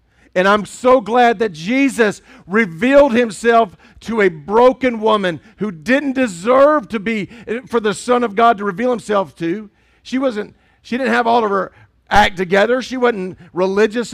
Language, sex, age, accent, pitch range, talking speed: English, male, 50-69, American, 175-235 Hz, 165 wpm